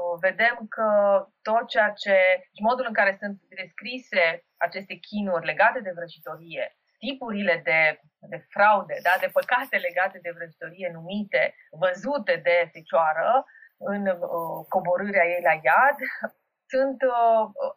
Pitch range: 175-220 Hz